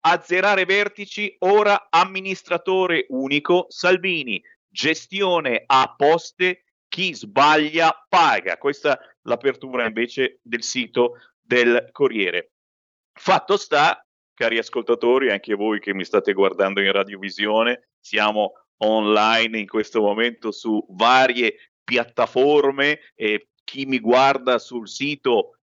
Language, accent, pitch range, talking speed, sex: Italian, native, 120-180 Hz, 110 wpm, male